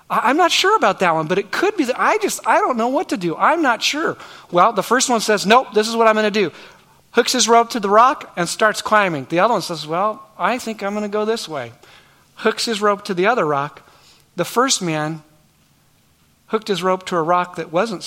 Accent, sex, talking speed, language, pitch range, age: American, male, 250 wpm, English, 160-215 Hz, 40-59